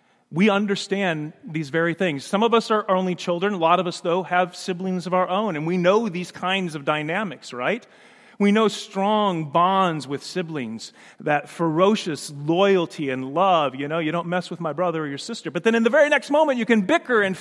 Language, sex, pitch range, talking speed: English, male, 135-205 Hz, 215 wpm